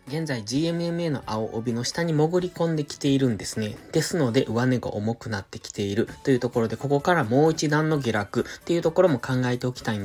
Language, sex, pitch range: Japanese, male, 115-150 Hz